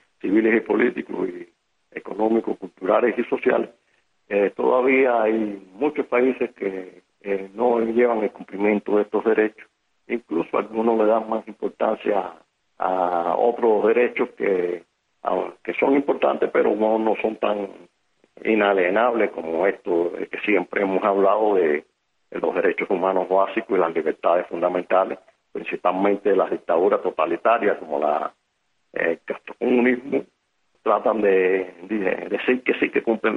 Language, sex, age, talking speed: Spanish, male, 50-69, 135 wpm